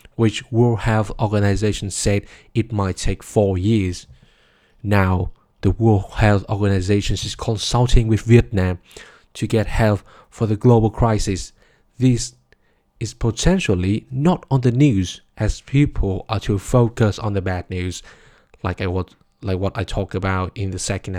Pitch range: 95-110 Hz